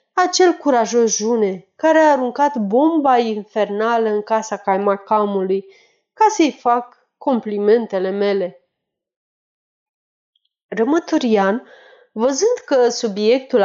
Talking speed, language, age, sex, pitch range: 90 wpm, Romanian, 30-49, female, 210-295 Hz